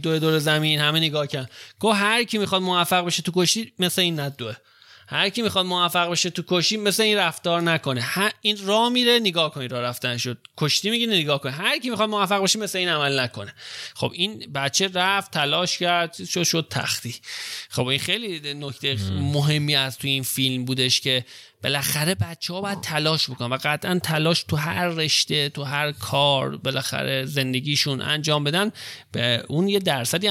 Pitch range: 135-180 Hz